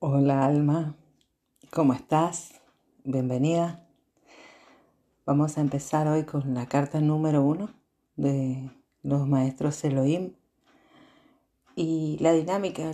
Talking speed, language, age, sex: 95 wpm, Spanish, 40-59, female